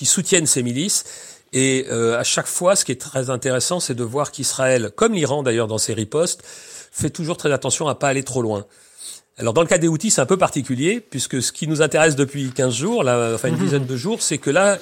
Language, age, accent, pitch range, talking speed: French, 40-59, French, 115-155 Hz, 245 wpm